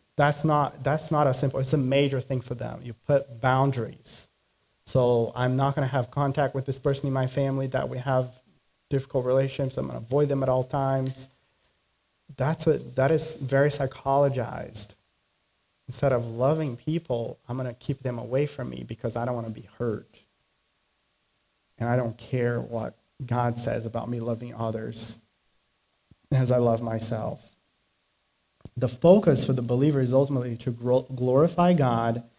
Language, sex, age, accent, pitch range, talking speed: English, male, 30-49, American, 120-140 Hz, 170 wpm